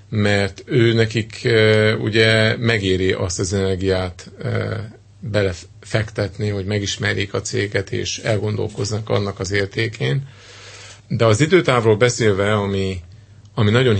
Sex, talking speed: male, 115 wpm